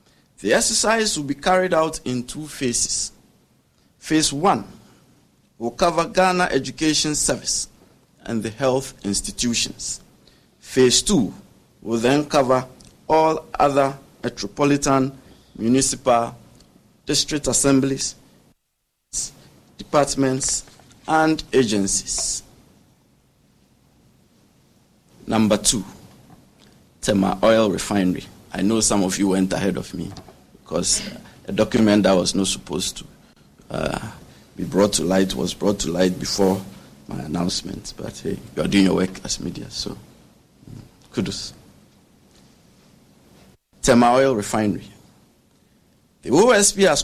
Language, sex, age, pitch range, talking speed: English, male, 50-69, 110-150 Hz, 110 wpm